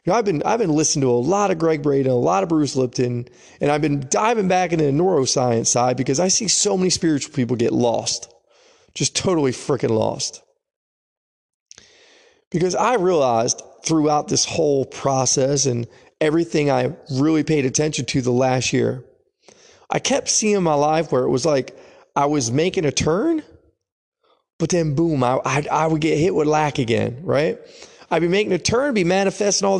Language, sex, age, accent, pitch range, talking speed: English, male, 30-49, American, 140-210 Hz, 185 wpm